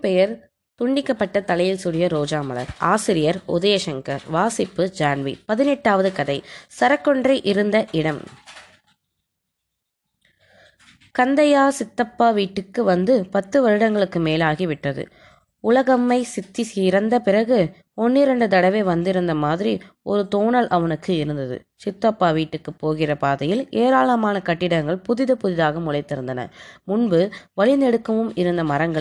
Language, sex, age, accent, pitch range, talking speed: Tamil, female, 20-39, native, 160-230 Hz, 85 wpm